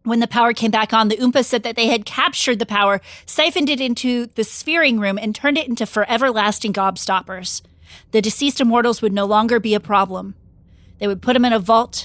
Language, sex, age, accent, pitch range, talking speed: English, female, 30-49, American, 195-240 Hz, 215 wpm